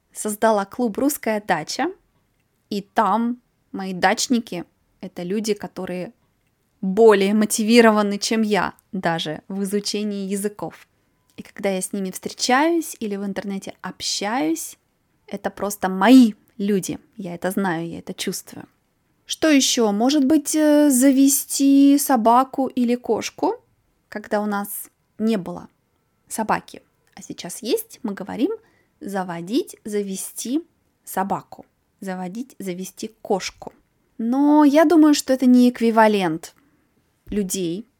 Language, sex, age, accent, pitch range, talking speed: Russian, female, 20-39, native, 195-245 Hz, 115 wpm